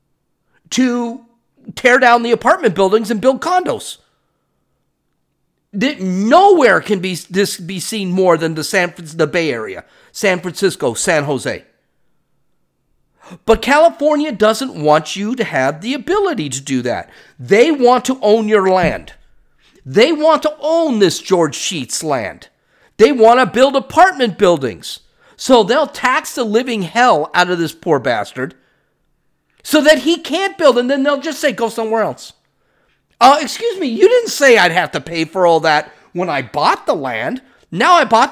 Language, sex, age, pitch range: English, male, 50-69, 190-295 Hz